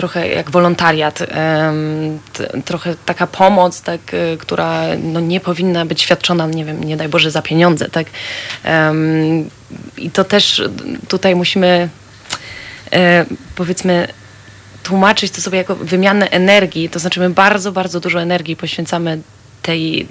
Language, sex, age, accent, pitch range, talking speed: Polish, female, 20-39, native, 165-200 Hz, 125 wpm